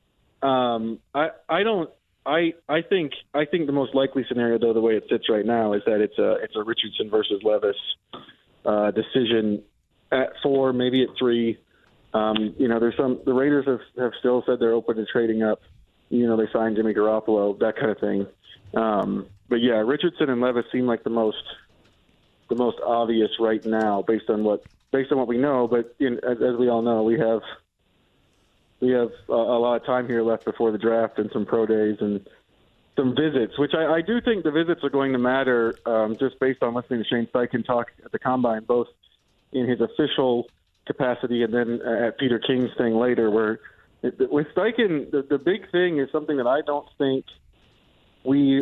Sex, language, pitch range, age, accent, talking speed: male, English, 110-135 Hz, 30-49, American, 200 wpm